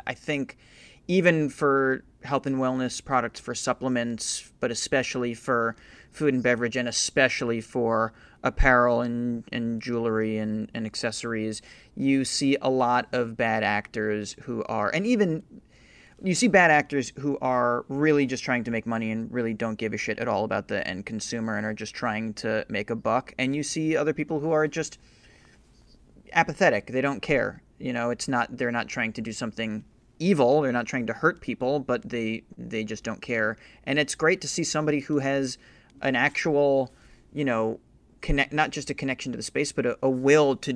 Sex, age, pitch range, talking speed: male, 30-49, 115-135 Hz, 190 wpm